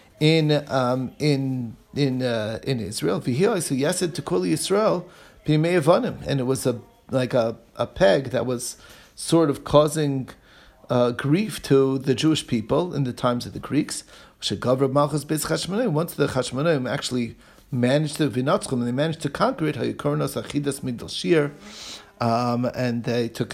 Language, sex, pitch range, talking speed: English, male, 120-150 Hz, 125 wpm